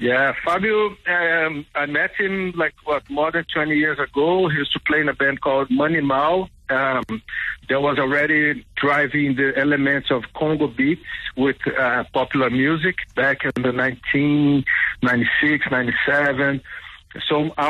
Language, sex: English, male